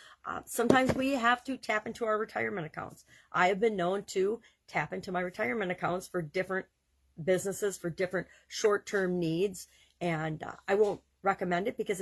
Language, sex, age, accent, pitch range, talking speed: English, female, 50-69, American, 170-215 Hz, 175 wpm